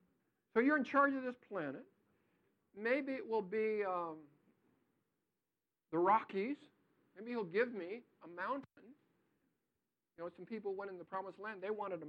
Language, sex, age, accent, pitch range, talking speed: English, male, 50-69, American, 180-240 Hz, 160 wpm